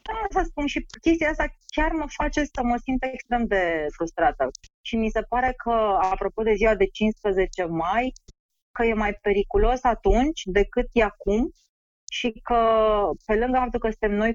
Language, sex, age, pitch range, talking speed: Romanian, female, 30-49, 180-245 Hz, 175 wpm